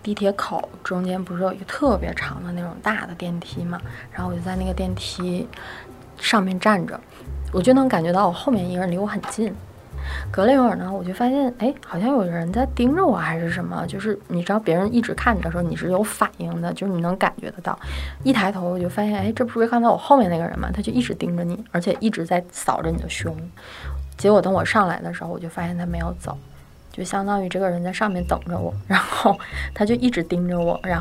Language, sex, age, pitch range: Chinese, female, 20-39, 175-210 Hz